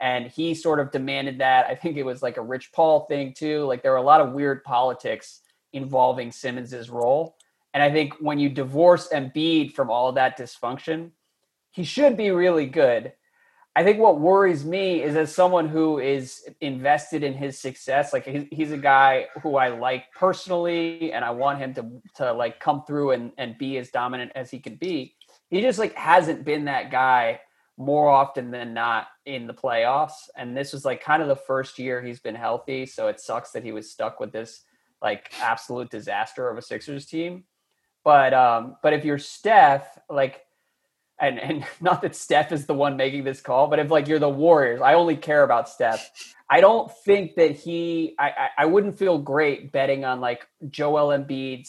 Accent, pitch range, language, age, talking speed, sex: American, 130-160 Hz, English, 30-49, 200 wpm, male